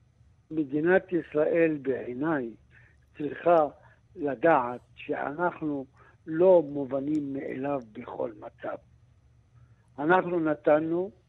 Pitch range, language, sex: 135-170 Hz, Hebrew, male